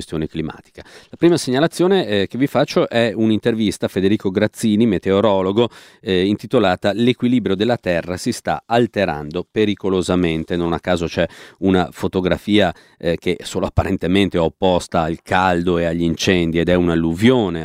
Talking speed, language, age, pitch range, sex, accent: 145 wpm, Italian, 40-59, 85-110 Hz, male, native